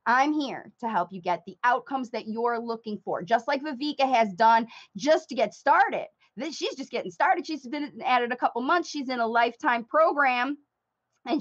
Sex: female